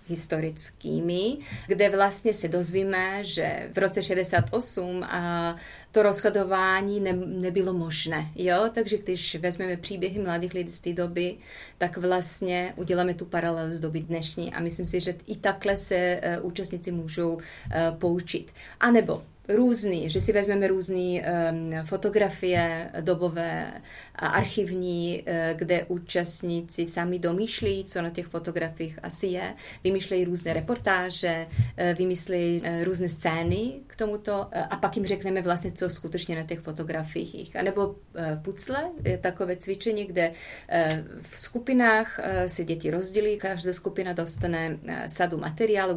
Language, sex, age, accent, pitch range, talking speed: Czech, female, 30-49, native, 170-195 Hz, 130 wpm